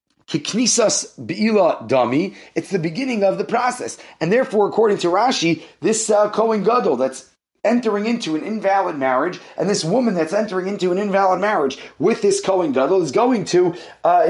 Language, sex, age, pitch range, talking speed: English, male, 30-49, 165-215 Hz, 170 wpm